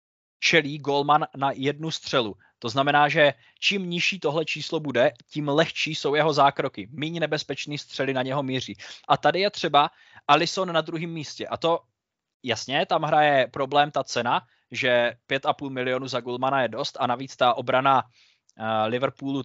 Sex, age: male, 20-39